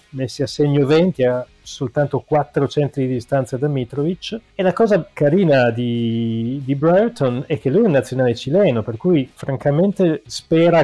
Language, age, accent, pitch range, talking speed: Italian, 30-49, native, 125-155 Hz, 165 wpm